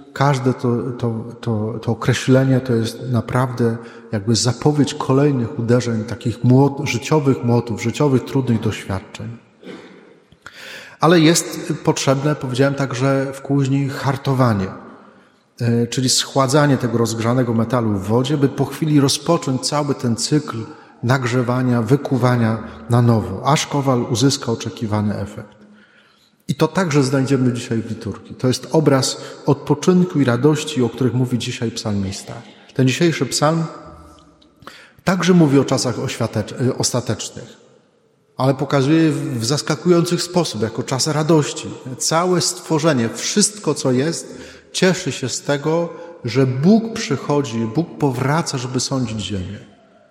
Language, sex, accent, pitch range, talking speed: Polish, male, native, 120-150 Hz, 120 wpm